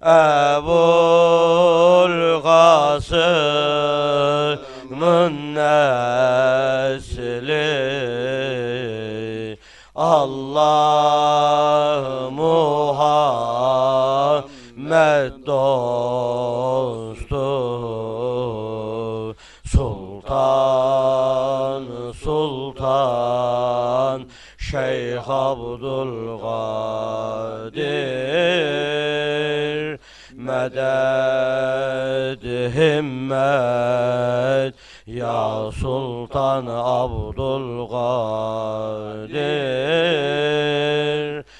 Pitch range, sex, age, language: 120-145 Hz, male, 40-59, Turkish